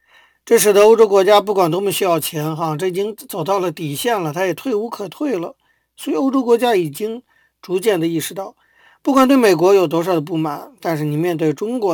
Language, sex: Chinese, male